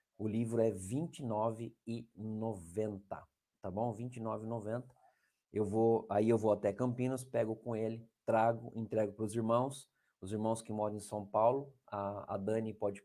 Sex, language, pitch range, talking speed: male, Portuguese, 105-125 Hz, 155 wpm